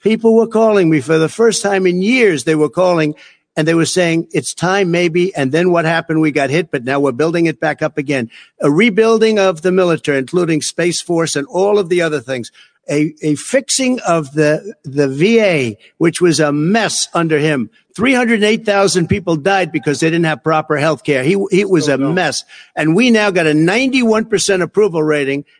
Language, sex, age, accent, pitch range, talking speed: English, male, 60-79, American, 155-210 Hz, 200 wpm